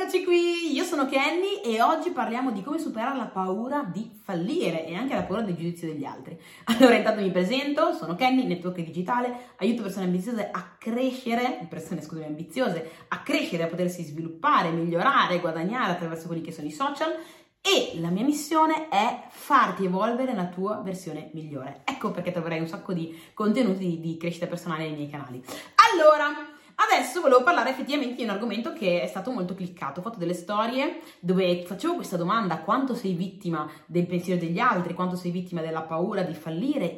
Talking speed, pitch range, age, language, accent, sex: 180 wpm, 170-245 Hz, 30-49, Italian, native, female